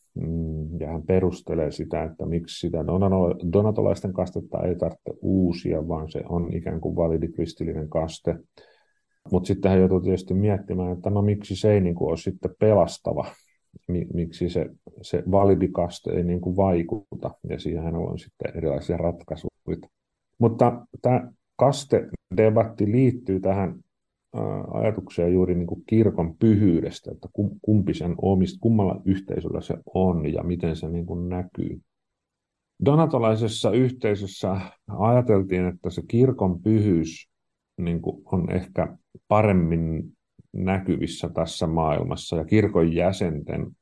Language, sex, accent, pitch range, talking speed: Finnish, male, native, 85-100 Hz, 110 wpm